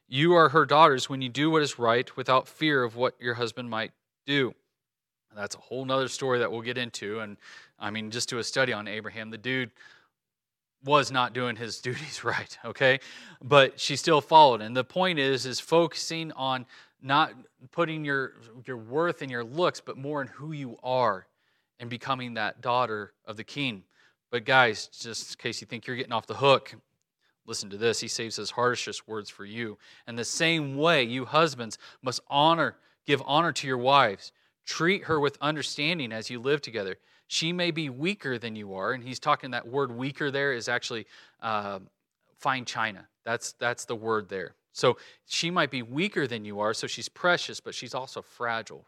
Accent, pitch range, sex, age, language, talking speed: American, 120-150 Hz, male, 30-49, English, 195 wpm